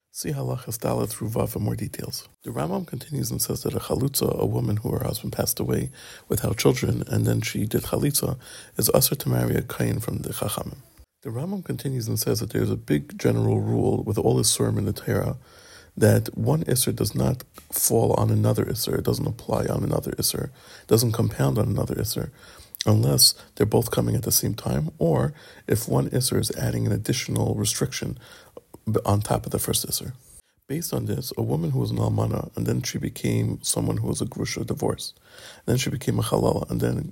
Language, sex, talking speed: English, male, 205 wpm